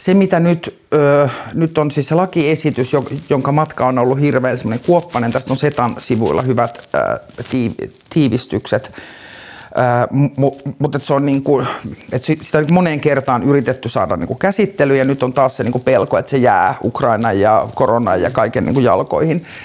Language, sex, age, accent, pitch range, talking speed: Finnish, male, 50-69, native, 125-150 Hz, 170 wpm